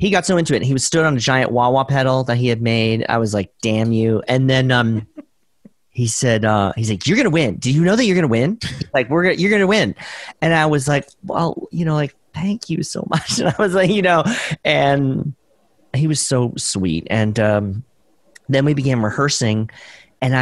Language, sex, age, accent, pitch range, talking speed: English, male, 40-59, American, 120-160 Hz, 225 wpm